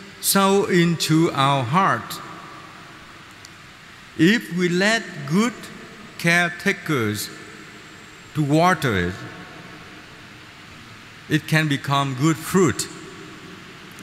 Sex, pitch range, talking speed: male, 120-165 Hz, 75 wpm